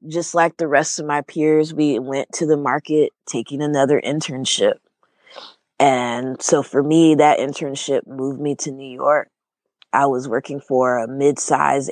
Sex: female